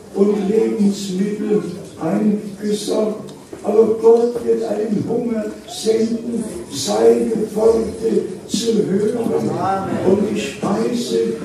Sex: male